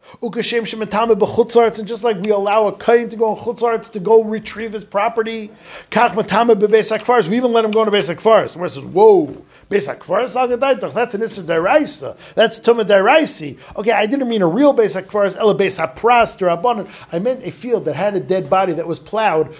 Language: English